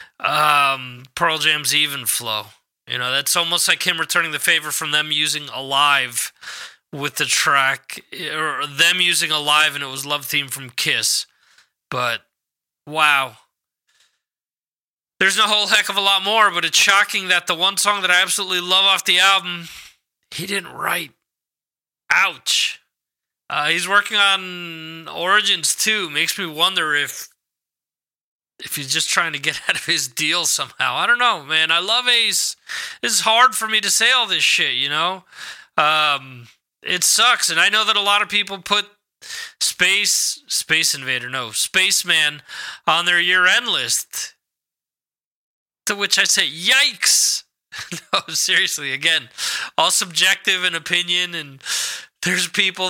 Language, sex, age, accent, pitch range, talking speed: English, male, 20-39, American, 150-200 Hz, 155 wpm